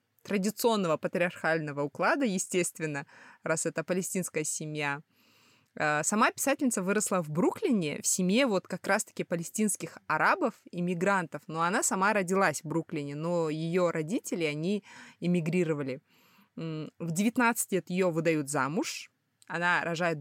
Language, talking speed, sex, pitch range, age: Russian, 120 wpm, female, 160-205 Hz, 20-39